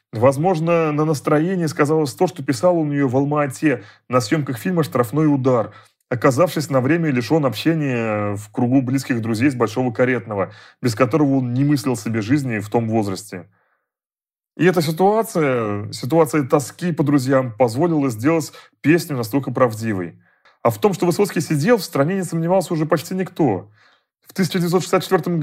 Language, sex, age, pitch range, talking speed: Russian, male, 30-49, 125-165 Hz, 155 wpm